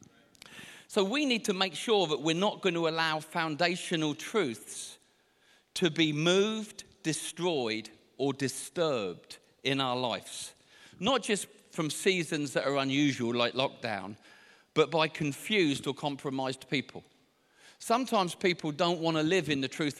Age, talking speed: 50-69, 140 wpm